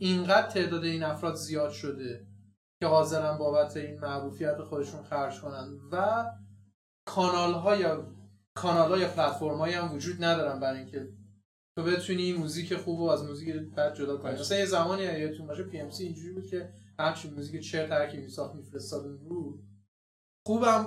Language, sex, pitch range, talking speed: Persian, male, 140-180 Hz, 150 wpm